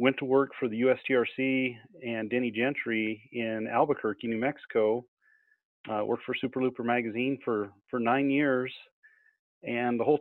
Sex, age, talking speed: male, 30-49, 155 wpm